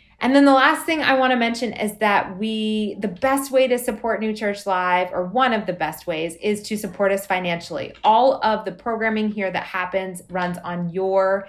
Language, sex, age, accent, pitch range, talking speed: English, female, 20-39, American, 175-215 Hz, 215 wpm